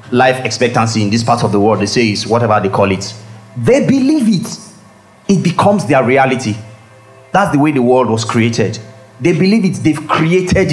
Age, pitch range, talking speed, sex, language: 30-49, 110-145 Hz, 190 wpm, male, English